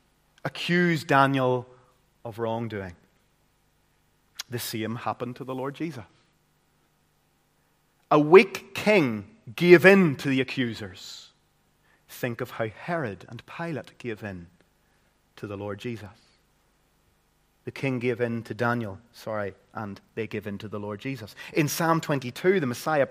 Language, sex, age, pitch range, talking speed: English, male, 30-49, 115-165 Hz, 130 wpm